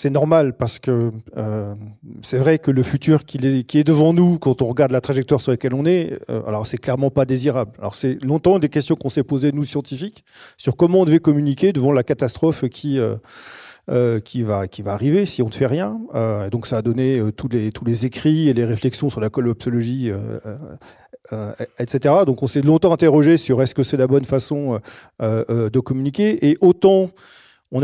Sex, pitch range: male, 125-160 Hz